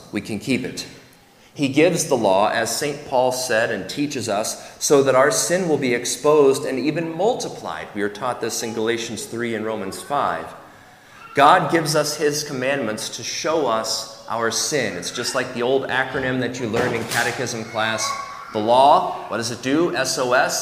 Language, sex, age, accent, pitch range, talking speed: English, male, 30-49, American, 115-150 Hz, 185 wpm